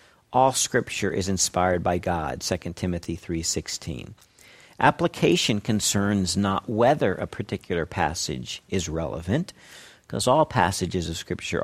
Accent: American